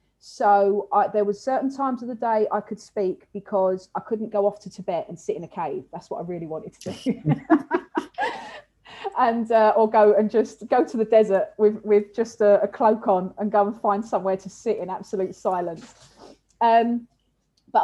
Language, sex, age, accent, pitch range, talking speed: English, female, 30-49, British, 195-225 Hz, 200 wpm